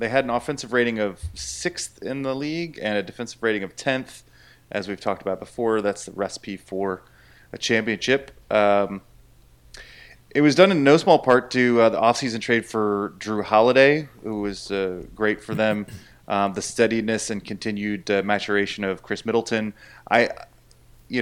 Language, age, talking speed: English, 30-49, 175 wpm